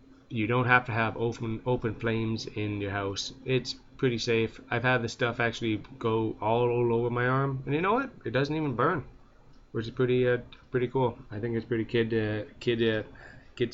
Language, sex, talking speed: English, male, 210 wpm